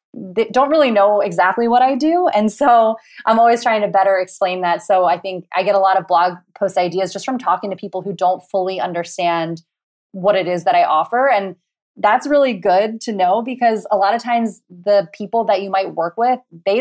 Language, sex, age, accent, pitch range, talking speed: English, female, 20-39, American, 175-210 Hz, 220 wpm